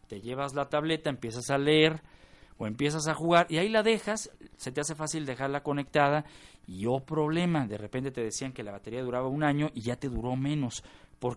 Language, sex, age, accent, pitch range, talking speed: Spanish, male, 40-59, Mexican, 125-165 Hz, 210 wpm